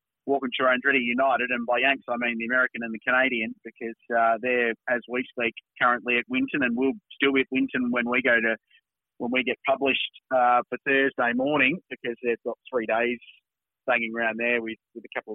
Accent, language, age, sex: Australian, English, 30-49, male